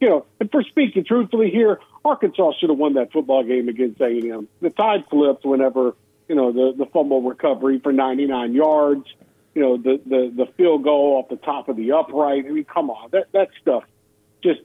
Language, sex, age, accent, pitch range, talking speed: English, male, 50-69, American, 130-190 Hz, 210 wpm